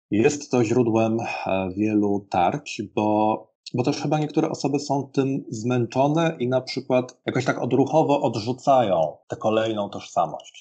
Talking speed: 135 wpm